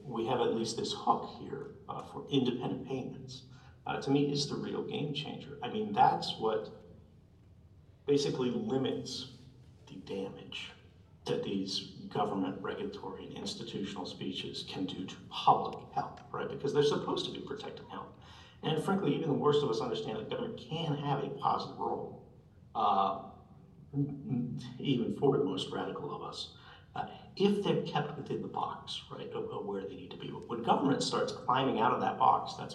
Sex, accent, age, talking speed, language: male, American, 50-69, 170 wpm, English